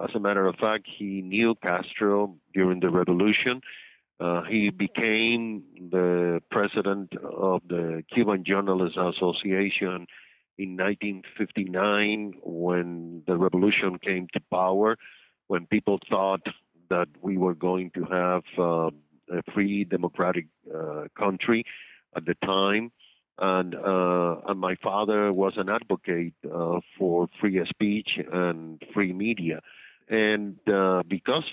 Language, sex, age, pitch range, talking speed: English, male, 50-69, 90-105 Hz, 125 wpm